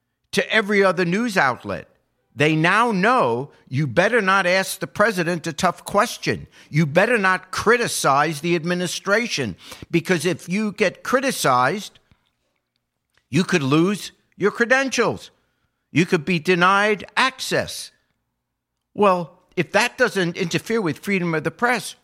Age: 50-69